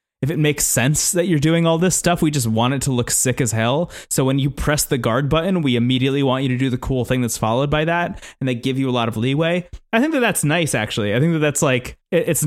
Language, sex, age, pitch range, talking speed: English, male, 20-39, 125-160 Hz, 285 wpm